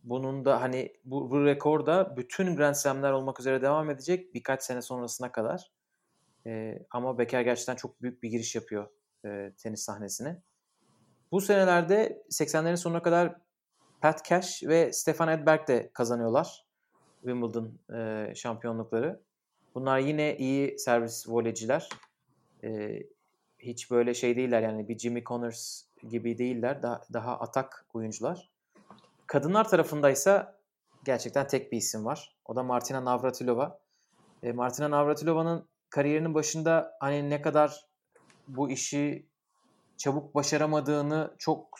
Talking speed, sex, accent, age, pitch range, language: 125 wpm, male, native, 30-49, 120-150 Hz, Turkish